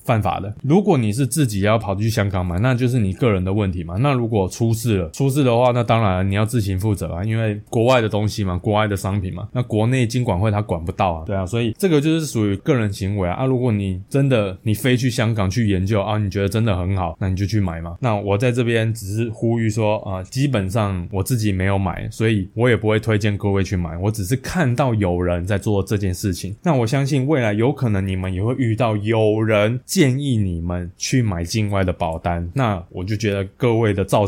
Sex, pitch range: male, 95-115 Hz